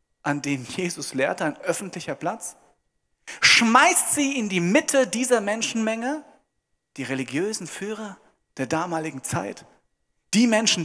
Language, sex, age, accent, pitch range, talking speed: German, male, 40-59, German, 175-260 Hz, 120 wpm